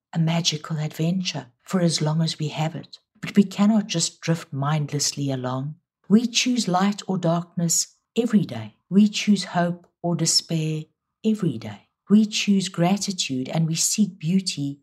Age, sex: 60-79, female